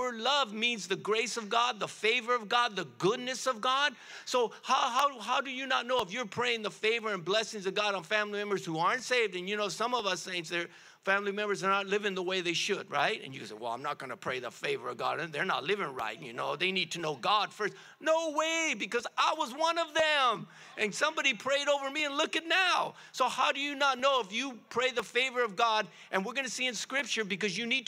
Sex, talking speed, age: male, 260 wpm, 50-69